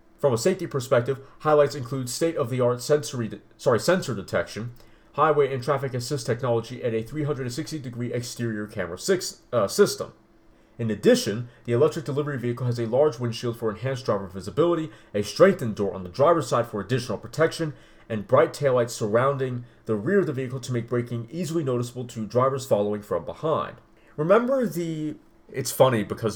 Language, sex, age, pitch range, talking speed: English, male, 30-49, 110-145 Hz, 165 wpm